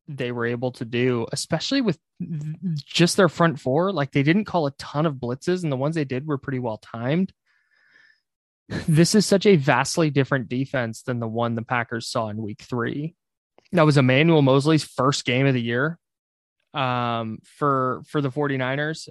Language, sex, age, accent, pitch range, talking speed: English, male, 20-39, American, 125-155 Hz, 180 wpm